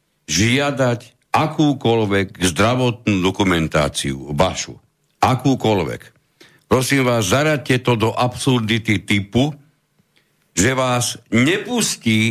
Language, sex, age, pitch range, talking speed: Slovak, male, 60-79, 100-145 Hz, 80 wpm